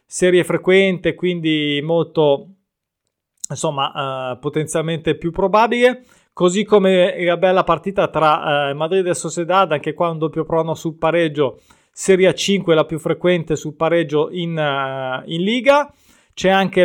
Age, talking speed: 20-39, 140 wpm